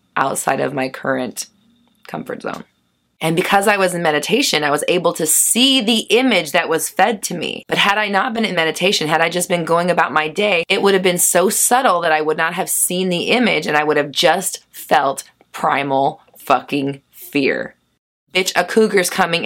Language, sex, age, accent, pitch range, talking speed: English, female, 20-39, American, 155-220 Hz, 205 wpm